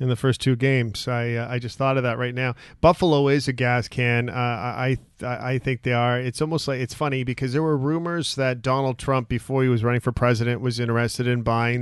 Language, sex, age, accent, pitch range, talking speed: English, male, 40-59, American, 125-170 Hz, 245 wpm